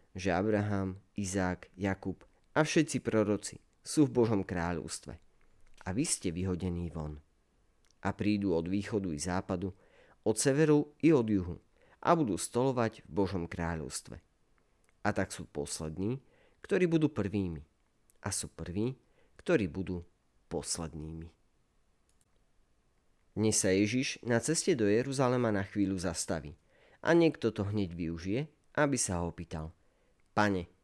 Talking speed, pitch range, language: 130 wpm, 90-120 Hz, Slovak